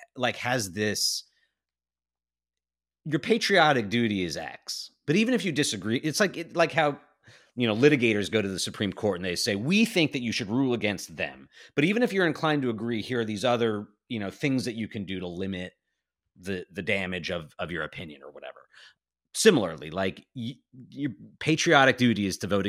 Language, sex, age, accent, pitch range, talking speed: English, male, 30-49, American, 90-125 Hz, 200 wpm